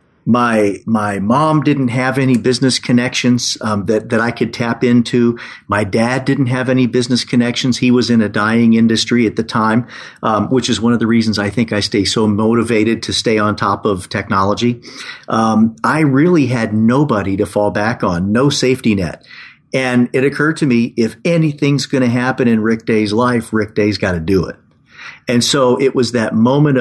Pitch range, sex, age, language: 110-125 Hz, male, 50-69, English